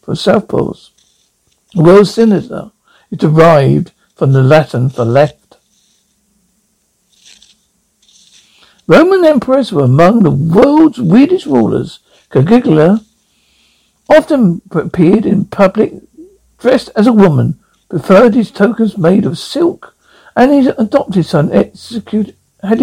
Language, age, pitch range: English, 60-79, 165-245 Hz